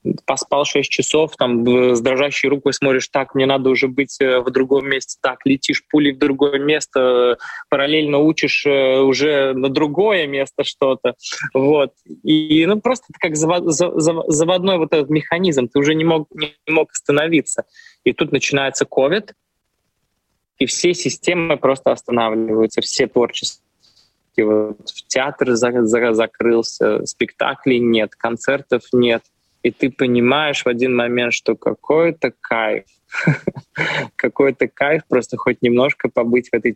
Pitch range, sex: 120-145 Hz, male